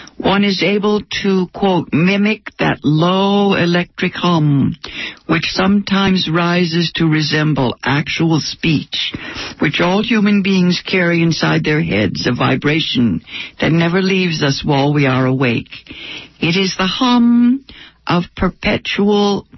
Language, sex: English, female